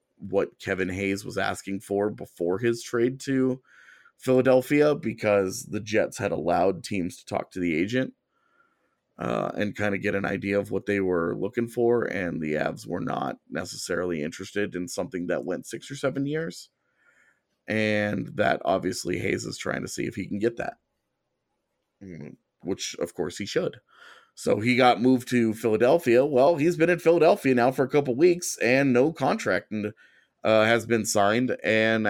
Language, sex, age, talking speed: English, male, 30-49, 170 wpm